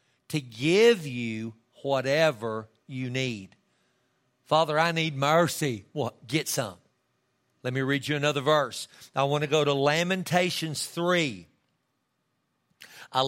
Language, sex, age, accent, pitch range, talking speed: English, male, 50-69, American, 130-185 Hz, 120 wpm